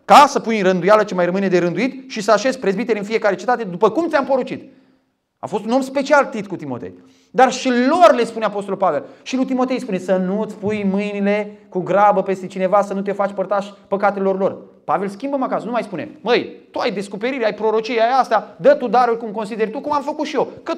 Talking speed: 235 wpm